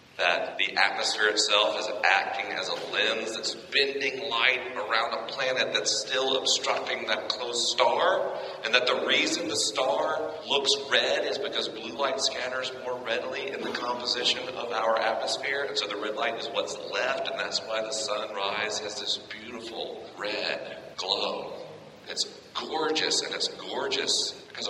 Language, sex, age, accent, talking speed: English, male, 40-59, American, 160 wpm